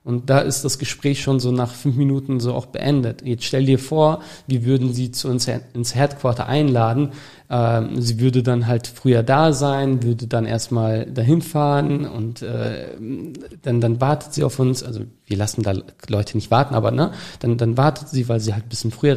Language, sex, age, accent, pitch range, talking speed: German, male, 40-59, German, 120-145 Hz, 195 wpm